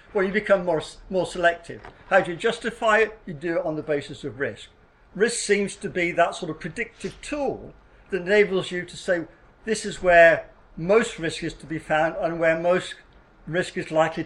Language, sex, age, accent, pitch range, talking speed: English, male, 50-69, British, 140-195 Hz, 200 wpm